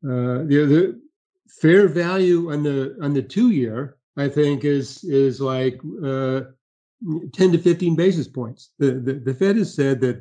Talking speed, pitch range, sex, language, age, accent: 170 wpm, 130-145 Hz, male, English, 50-69, American